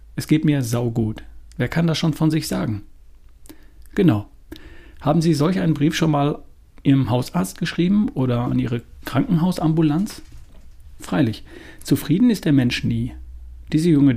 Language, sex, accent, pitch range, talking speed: German, male, German, 115-160 Hz, 145 wpm